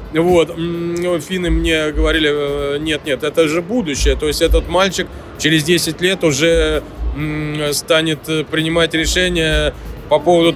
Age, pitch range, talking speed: 20-39, 150-170 Hz, 125 wpm